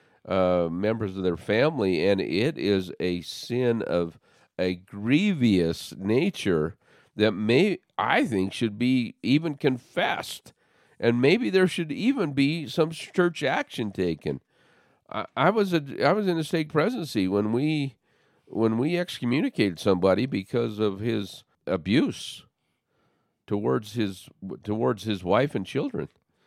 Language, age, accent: English, 50-69, American